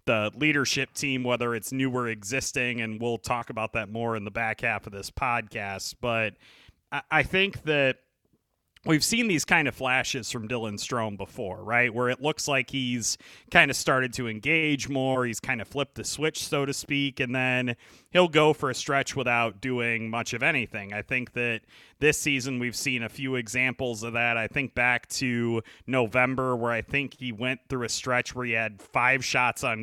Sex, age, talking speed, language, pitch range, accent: male, 30-49, 195 wpm, English, 115-140 Hz, American